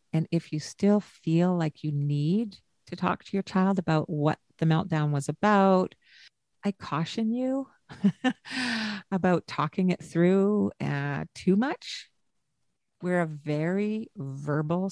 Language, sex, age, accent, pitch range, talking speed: English, female, 50-69, American, 155-195 Hz, 135 wpm